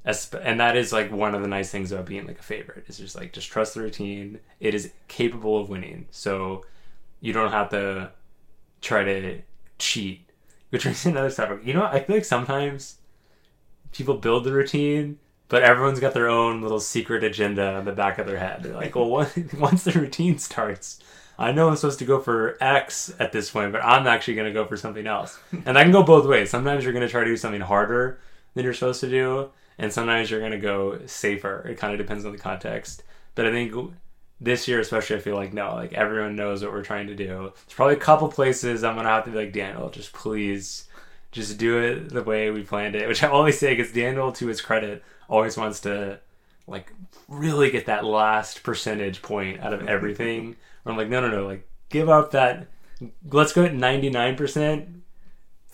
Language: English